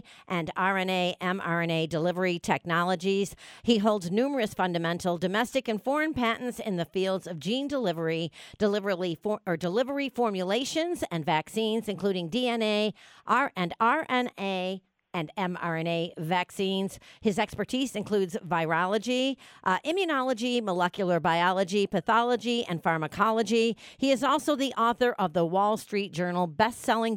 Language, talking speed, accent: English, 125 wpm, American